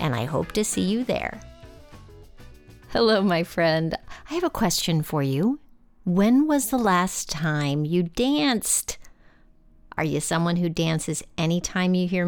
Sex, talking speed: female, 150 wpm